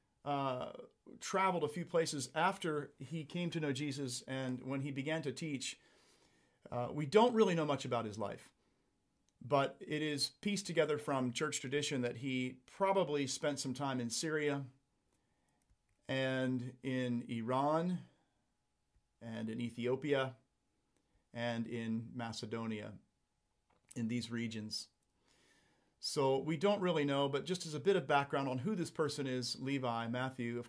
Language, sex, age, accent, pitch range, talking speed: English, male, 40-59, American, 125-160 Hz, 145 wpm